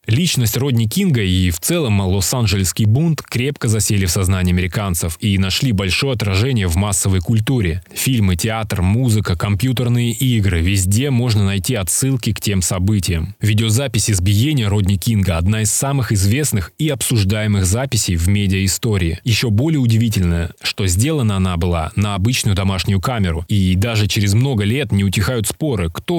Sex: male